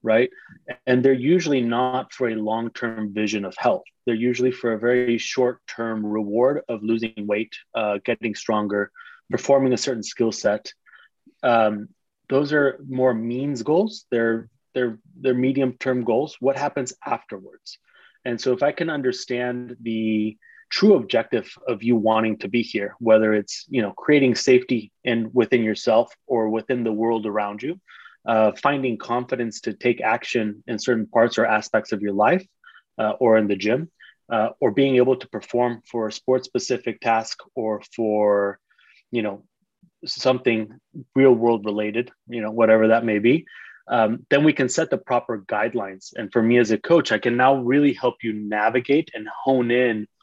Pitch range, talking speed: 110-130 Hz, 170 wpm